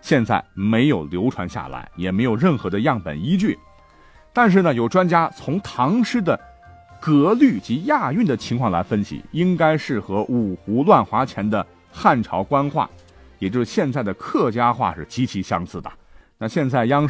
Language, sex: Chinese, male